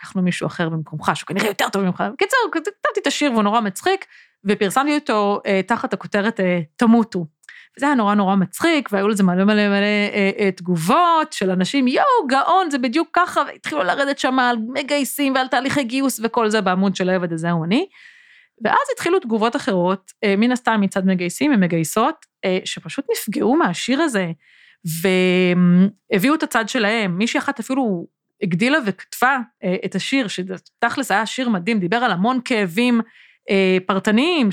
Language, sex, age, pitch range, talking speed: Hebrew, female, 30-49, 195-280 Hz, 135 wpm